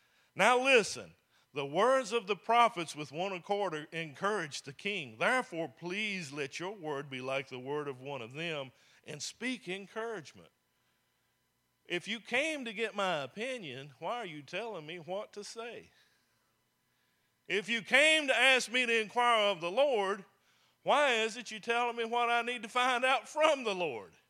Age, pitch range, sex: 50-69, 140-220 Hz, male